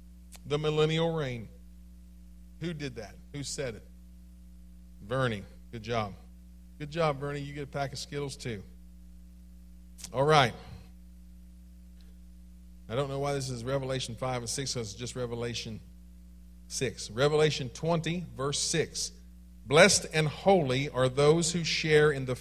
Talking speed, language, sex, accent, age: 140 wpm, English, male, American, 40-59